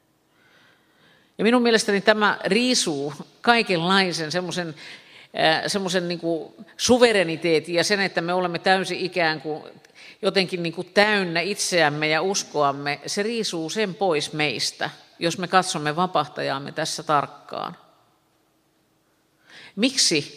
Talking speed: 90 wpm